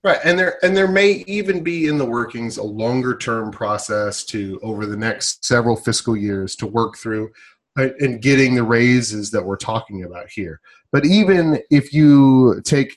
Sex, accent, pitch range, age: male, American, 110-150 Hz, 30-49